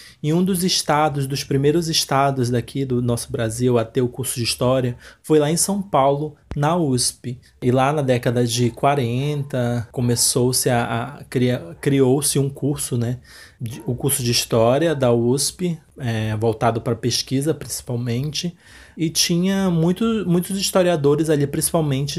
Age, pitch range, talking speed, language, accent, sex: 20-39, 125-180 Hz, 150 wpm, Portuguese, Brazilian, male